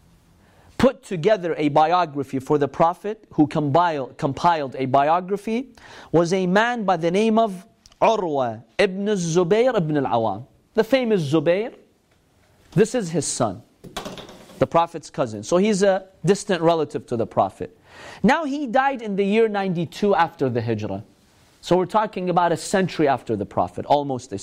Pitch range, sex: 130-200 Hz, male